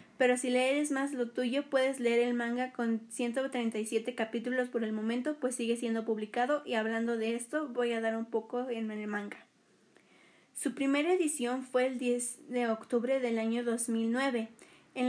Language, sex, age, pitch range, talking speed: Spanish, female, 20-39, 230-255 Hz, 175 wpm